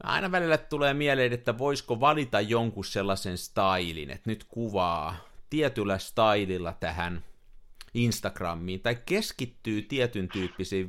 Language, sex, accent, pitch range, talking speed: Finnish, male, native, 95-140 Hz, 115 wpm